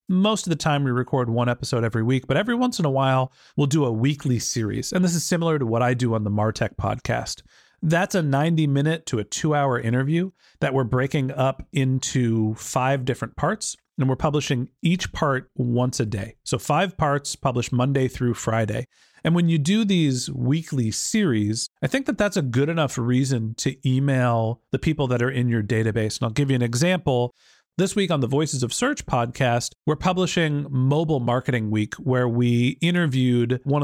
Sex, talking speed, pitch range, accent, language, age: male, 200 wpm, 125-155 Hz, American, English, 40-59